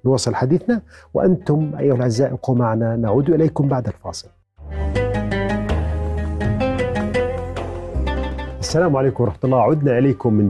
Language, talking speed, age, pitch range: Arabic, 95 wpm, 40-59, 110-155 Hz